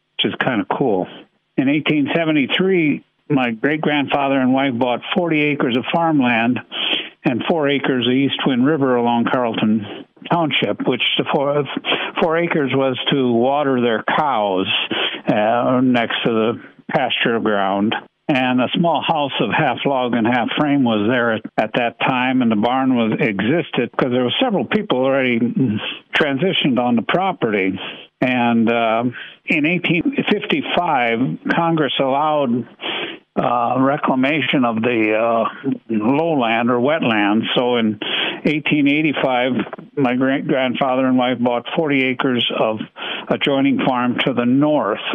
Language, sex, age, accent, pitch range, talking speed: English, male, 60-79, American, 120-145 Hz, 135 wpm